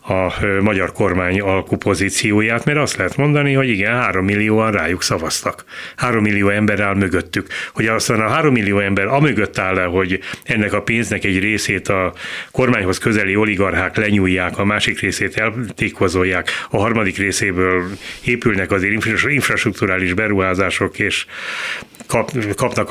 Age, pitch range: 30-49, 95-115 Hz